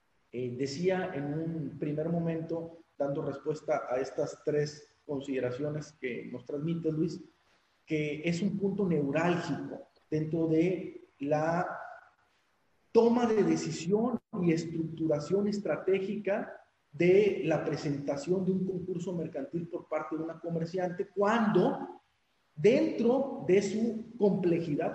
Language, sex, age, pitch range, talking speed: Spanish, male, 40-59, 155-200 Hz, 115 wpm